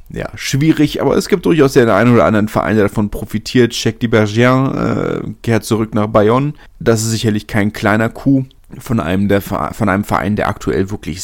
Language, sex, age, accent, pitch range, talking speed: German, male, 30-49, German, 105-130 Hz, 190 wpm